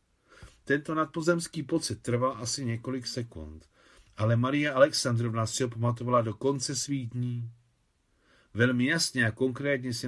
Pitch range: 105-130 Hz